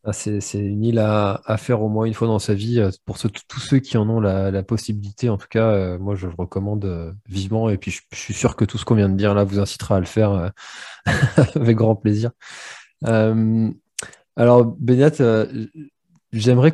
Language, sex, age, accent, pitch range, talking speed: French, male, 20-39, French, 95-120 Hz, 215 wpm